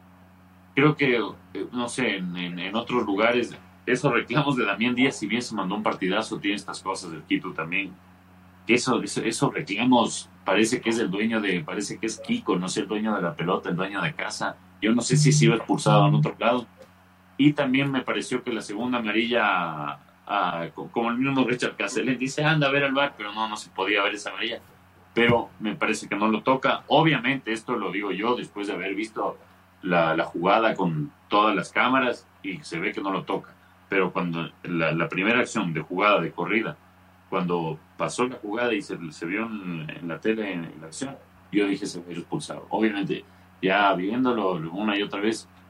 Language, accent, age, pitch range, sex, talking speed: Spanish, Mexican, 40-59, 90-115 Hz, male, 205 wpm